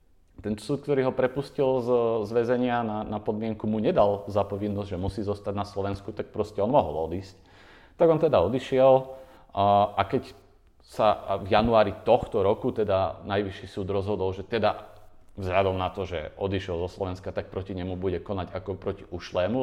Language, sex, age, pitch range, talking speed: Slovak, male, 30-49, 85-105 Hz, 165 wpm